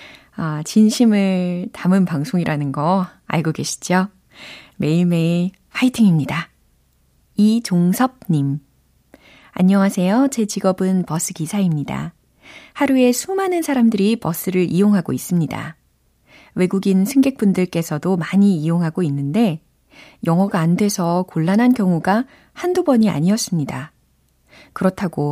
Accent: native